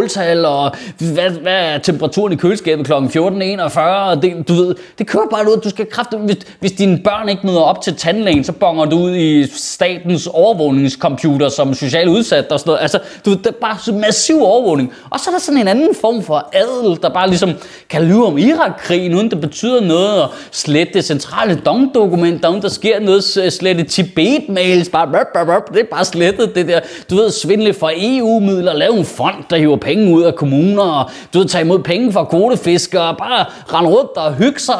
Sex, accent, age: male, native, 20-39